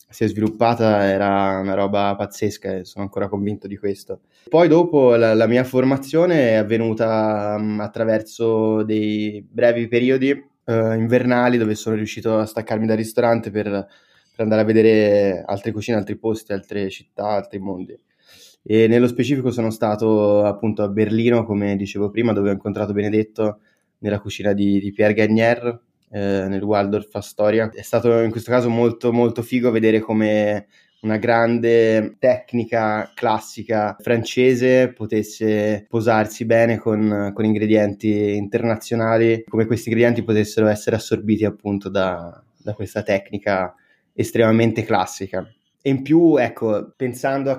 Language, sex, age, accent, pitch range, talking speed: Italian, male, 20-39, native, 105-120 Hz, 140 wpm